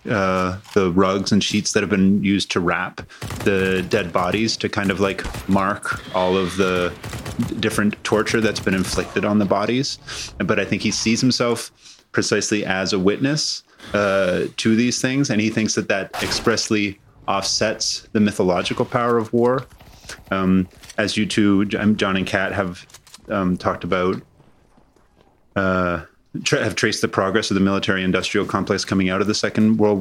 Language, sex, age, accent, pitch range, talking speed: English, male, 30-49, American, 95-110 Hz, 165 wpm